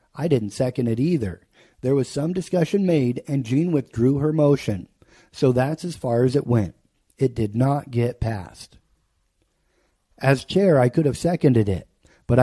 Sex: male